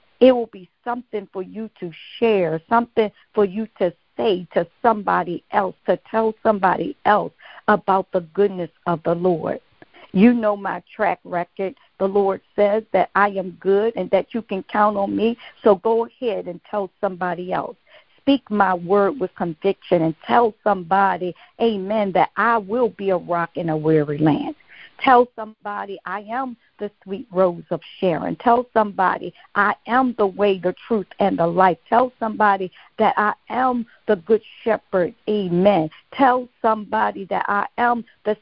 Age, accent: 50-69, American